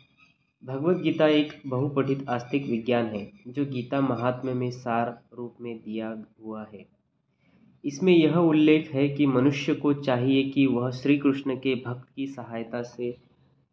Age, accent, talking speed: 20-39, native, 150 wpm